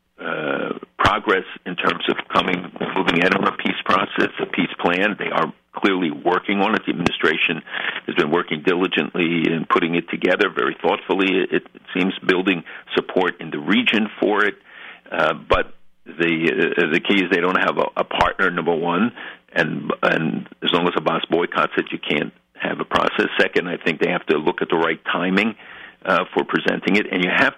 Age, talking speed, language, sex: 50-69, 195 wpm, English, male